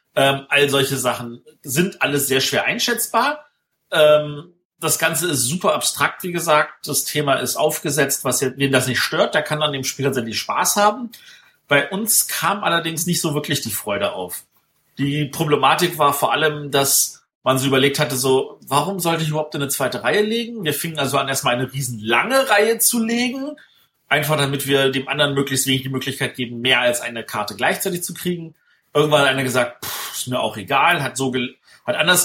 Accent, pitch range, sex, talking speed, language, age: German, 130-165 Hz, male, 190 wpm, German, 40-59